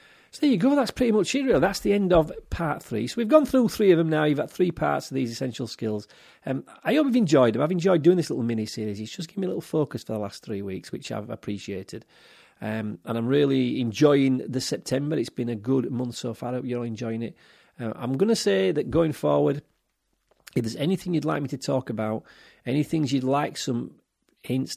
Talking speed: 245 wpm